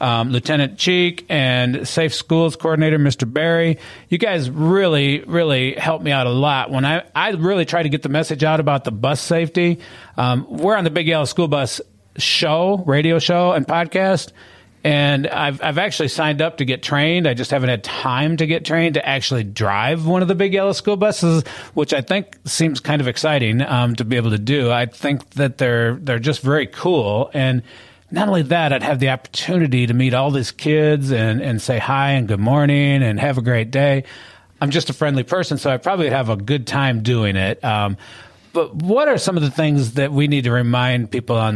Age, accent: 40-59, American